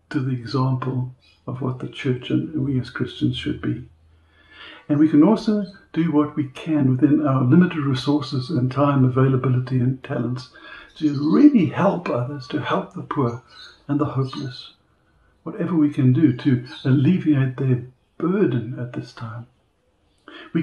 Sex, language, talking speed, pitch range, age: male, English, 155 wpm, 125-155 Hz, 60-79